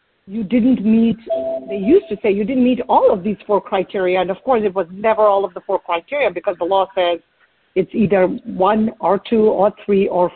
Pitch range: 195-225 Hz